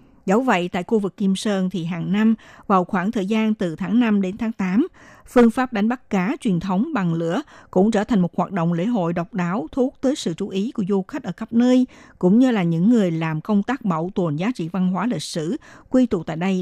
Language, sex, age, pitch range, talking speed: Vietnamese, female, 60-79, 180-240 Hz, 255 wpm